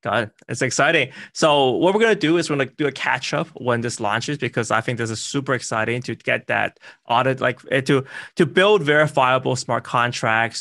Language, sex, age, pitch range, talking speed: English, male, 20-39, 110-135 Hz, 215 wpm